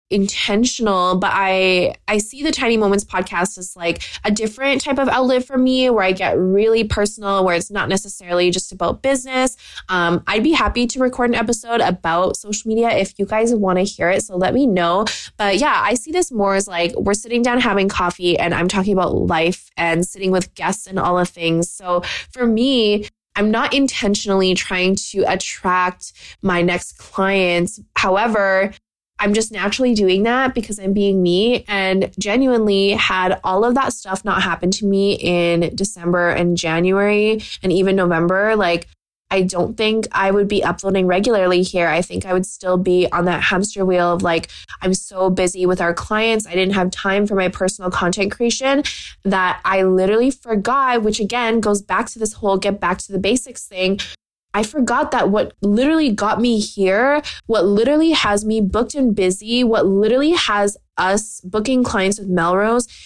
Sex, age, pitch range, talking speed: female, 20-39, 185-220 Hz, 185 wpm